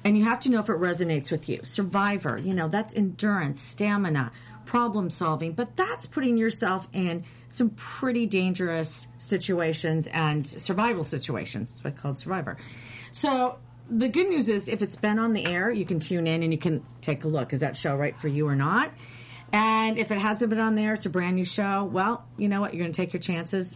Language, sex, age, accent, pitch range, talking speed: English, female, 40-59, American, 160-225 Hz, 215 wpm